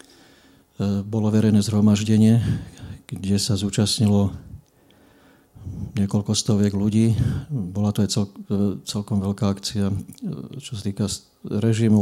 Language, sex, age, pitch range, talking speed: Slovak, male, 50-69, 100-110 Hz, 100 wpm